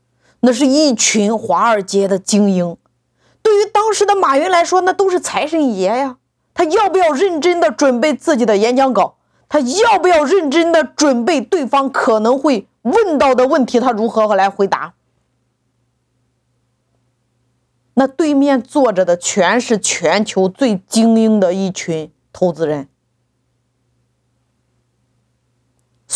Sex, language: female, Chinese